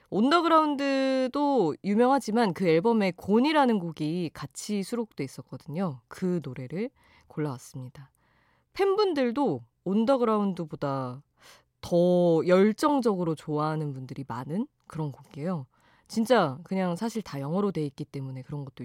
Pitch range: 145-230 Hz